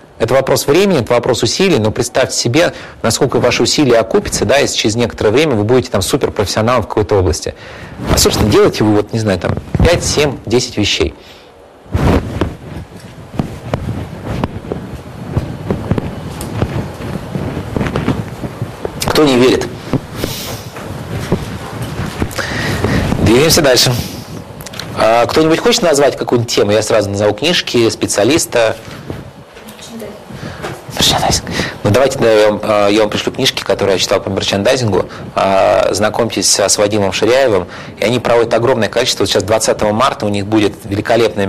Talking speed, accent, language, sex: 120 wpm, native, Russian, male